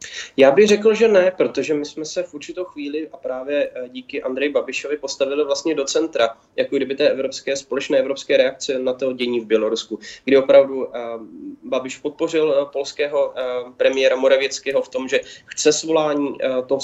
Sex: male